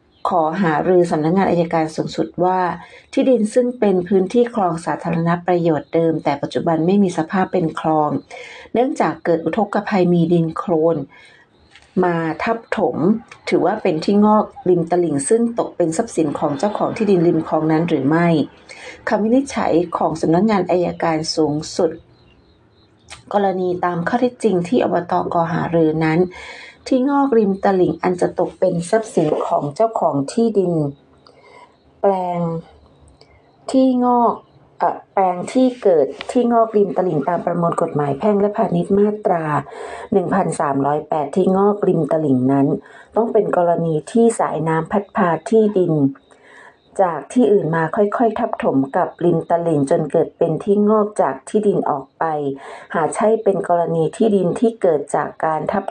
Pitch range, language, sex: 160-210 Hz, Thai, female